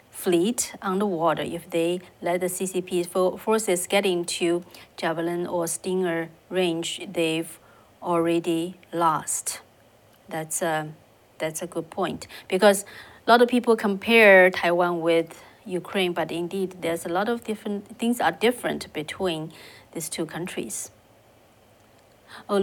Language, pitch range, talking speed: English, 165-190 Hz, 125 wpm